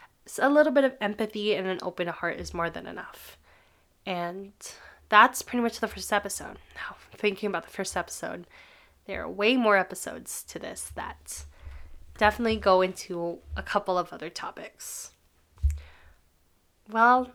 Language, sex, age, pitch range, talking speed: English, female, 20-39, 185-220 Hz, 150 wpm